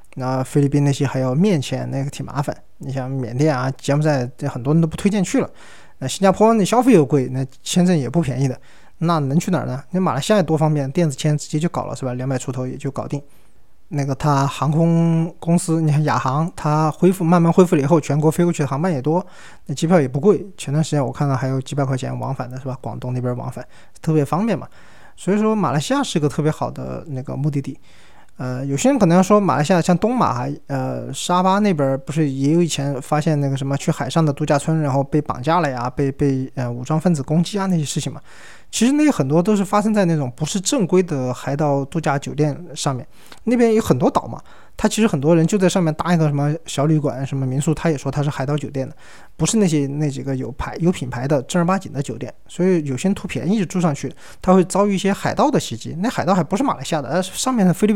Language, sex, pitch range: Chinese, male, 135-180 Hz